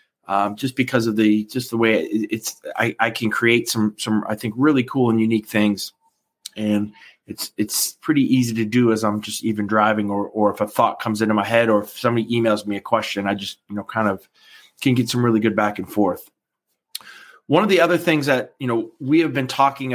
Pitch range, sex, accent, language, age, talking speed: 105-125 Hz, male, American, English, 20-39, 230 wpm